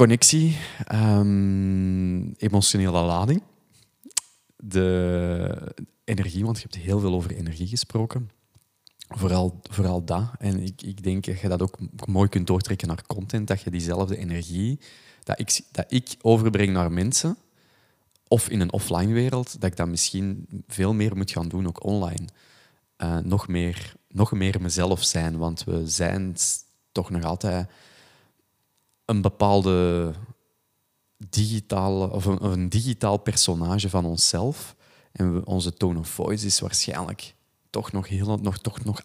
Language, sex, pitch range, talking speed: Dutch, male, 90-110 Hz, 140 wpm